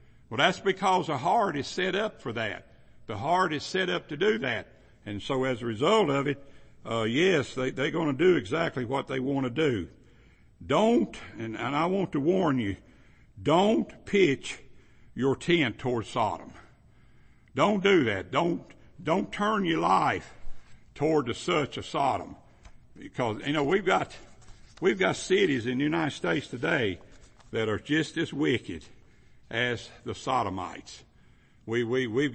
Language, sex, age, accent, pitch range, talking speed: English, male, 60-79, American, 125-185 Hz, 165 wpm